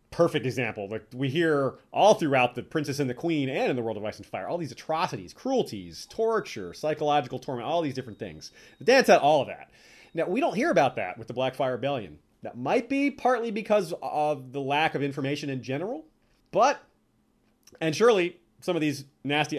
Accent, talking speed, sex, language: American, 205 wpm, male, English